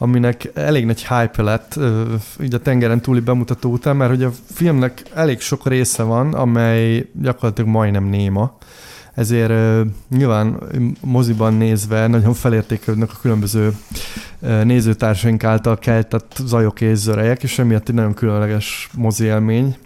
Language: Hungarian